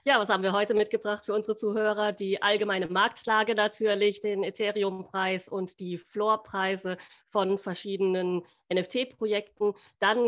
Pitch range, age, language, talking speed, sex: 180-215 Hz, 30-49, German, 130 wpm, female